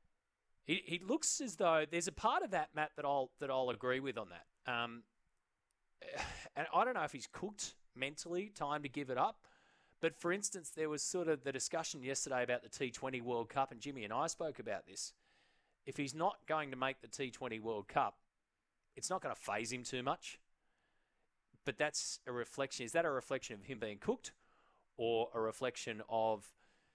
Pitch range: 120-145 Hz